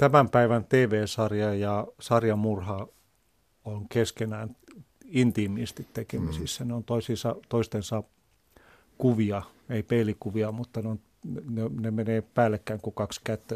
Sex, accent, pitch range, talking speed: male, native, 110-130 Hz, 110 wpm